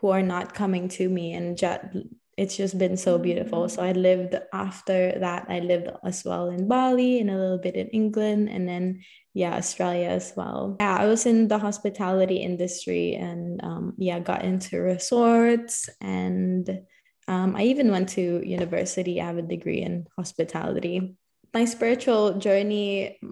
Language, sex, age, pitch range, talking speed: English, female, 20-39, 180-210 Hz, 165 wpm